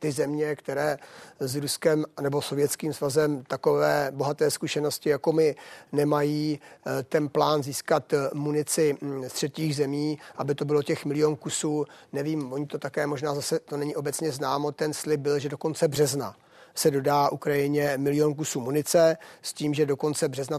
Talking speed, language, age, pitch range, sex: 165 wpm, Czech, 40-59, 140-150 Hz, male